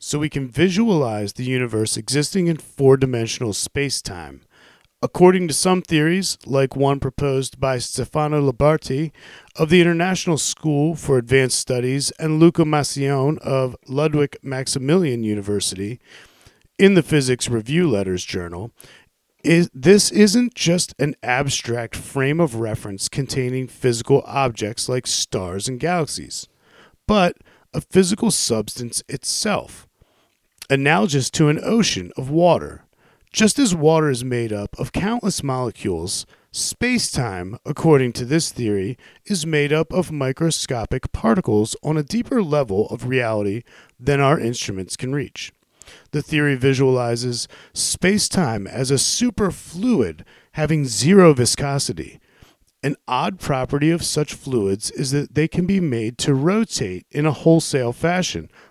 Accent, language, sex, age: American, English, male, 40-59